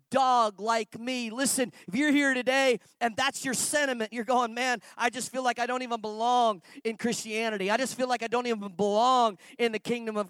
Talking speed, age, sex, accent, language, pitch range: 215 wpm, 40-59, male, American, English, 195-250 Hz